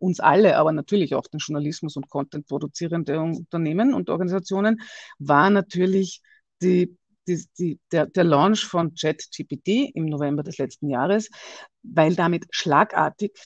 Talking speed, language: 140 wpm, English